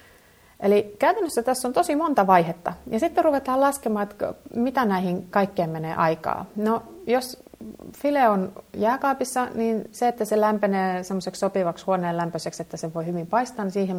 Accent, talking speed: native, 160 wpm